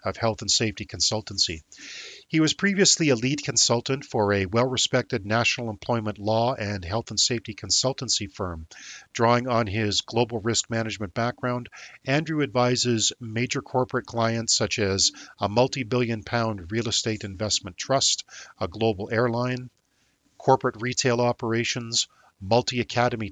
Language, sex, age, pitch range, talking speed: English, male, 50-69, 105-125 Hz, 130 wpm